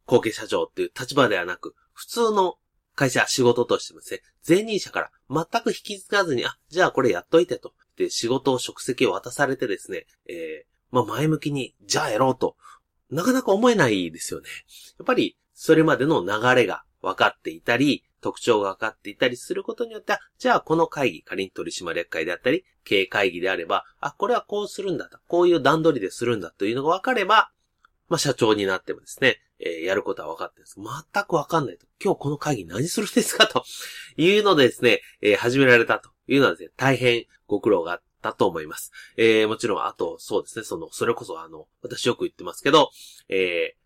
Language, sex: Japanese, male